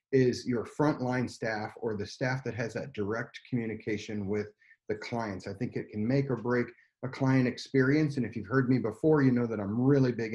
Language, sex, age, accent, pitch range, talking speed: English, male, 40-59, American, 110-135 Hz, 215 wpm